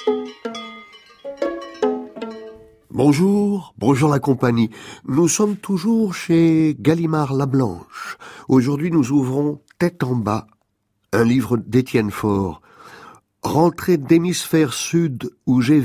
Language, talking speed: French, 100 wpm